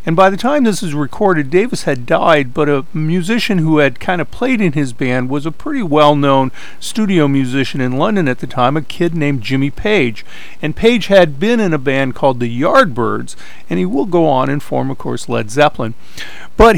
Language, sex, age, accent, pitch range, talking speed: English, male, 50-69, American, 130-175 Hz, 210 wpm